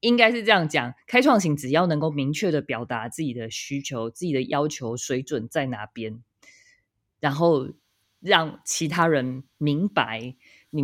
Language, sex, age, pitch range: Chinese, female, 20-39, 130-175 Hz